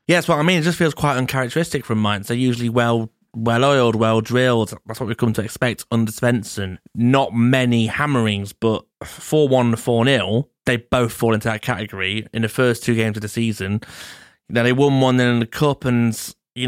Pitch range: 110-135 Hz